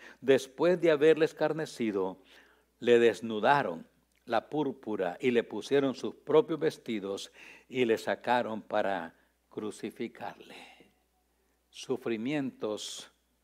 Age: 60-79